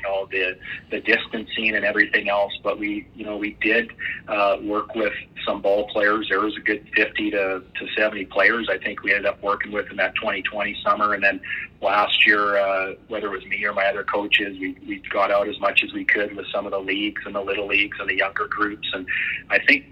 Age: 40-59